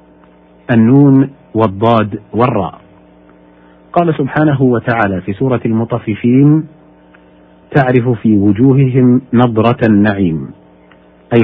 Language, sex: Arabic, male